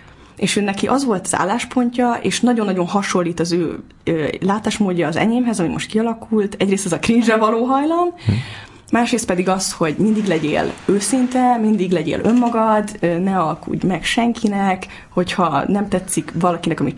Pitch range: 180-230 Hz